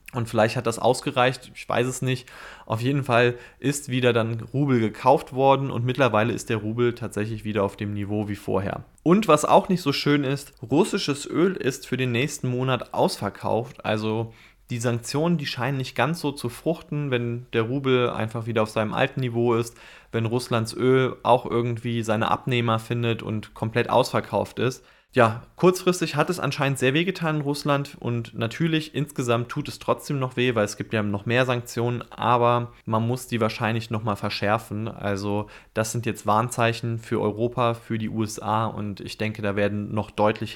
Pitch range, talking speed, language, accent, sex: 110-130 Hz, 185 wpm, German, German, male